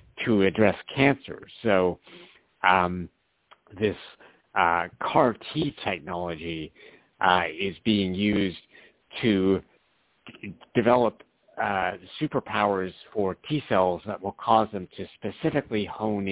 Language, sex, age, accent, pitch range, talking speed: English, male, 60-79, American, 90-105 Hz, 100 wpm